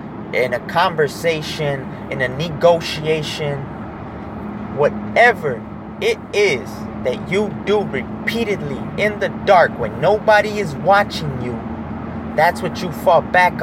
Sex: male